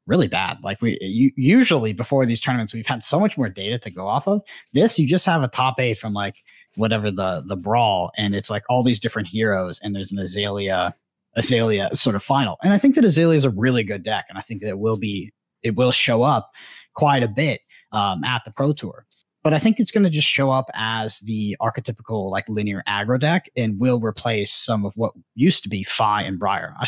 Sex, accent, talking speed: male, American, 230 wpm